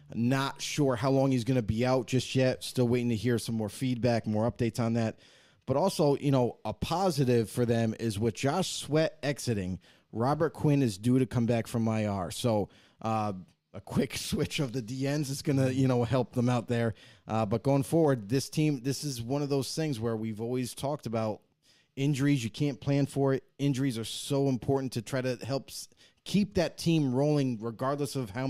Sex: male